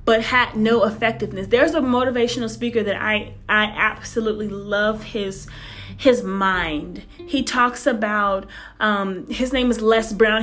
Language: English